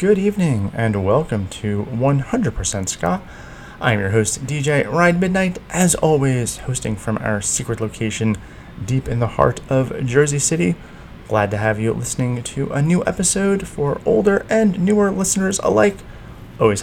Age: 30-49